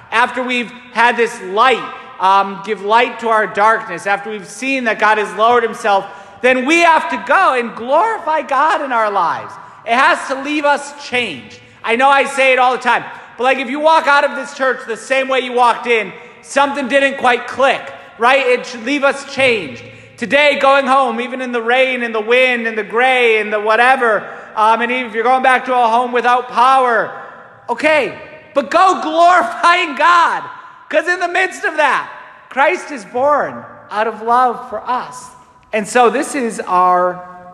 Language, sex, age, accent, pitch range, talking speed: English, male, 30-49, American, 200-260 Hz, 195 wpm